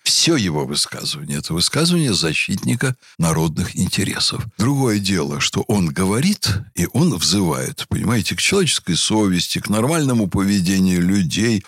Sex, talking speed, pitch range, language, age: male, 125 wpm, 95-150 Hz, Russian, 60-79